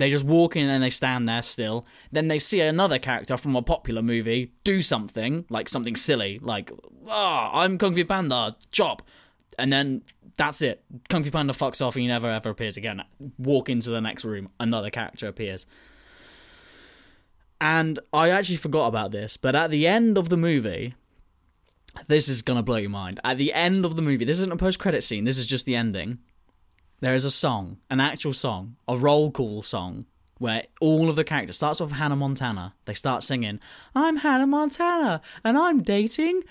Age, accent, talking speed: 10-29, British, 195 wpm